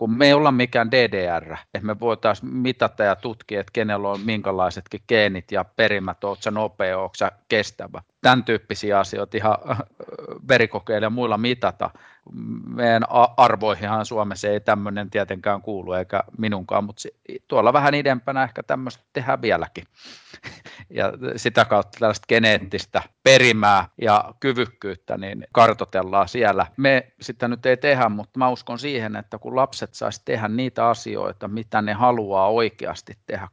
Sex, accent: male, native